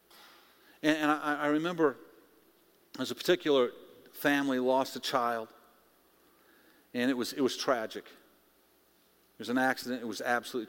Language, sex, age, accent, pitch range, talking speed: English, male, 50-69, American, 120-180 Hz, 130 wpm